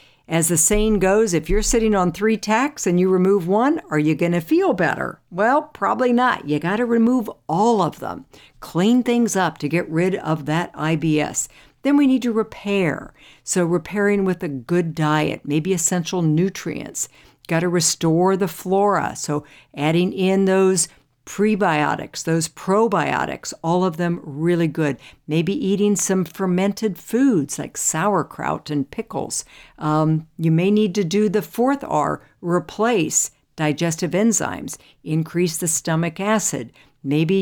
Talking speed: 155 wpm